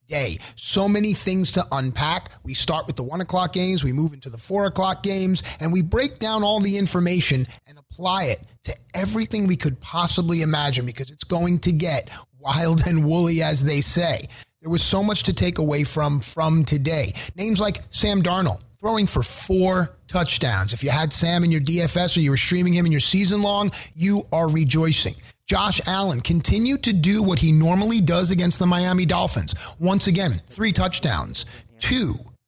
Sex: male